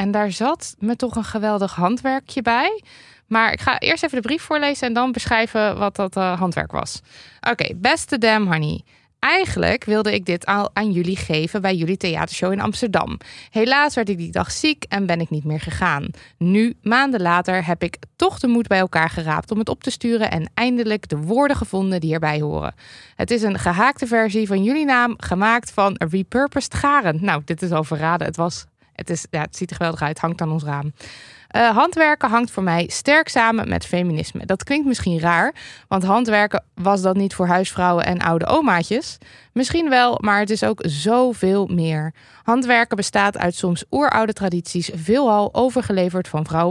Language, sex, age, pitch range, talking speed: Dutch, female, 20-39, 175-240 Hz, 190 wpm